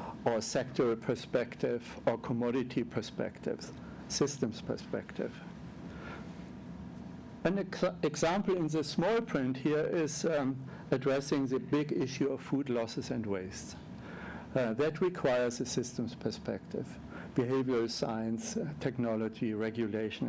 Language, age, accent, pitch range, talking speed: English, 60-79, German, 125-155 Hz, 110 wpm